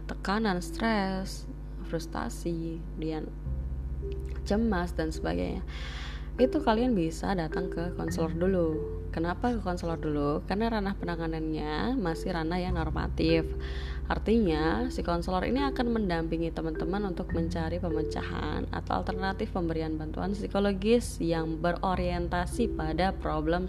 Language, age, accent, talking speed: Indonesian, 20-39, native, 110 wpm